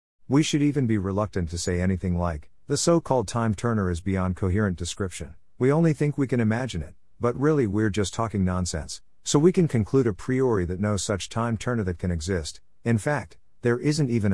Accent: American